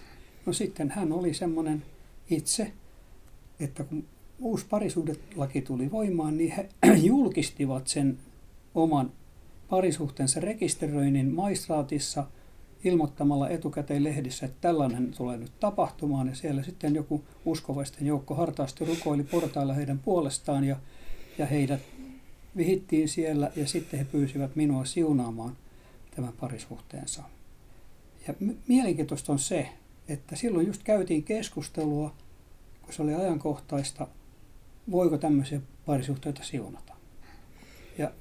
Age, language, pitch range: 60-79, Finnish, 140-180 Hz